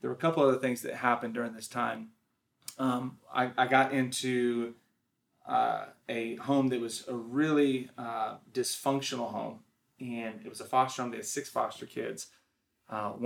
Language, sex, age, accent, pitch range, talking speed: English, male, 30-49, American, 115-130 Hz, 170 wpm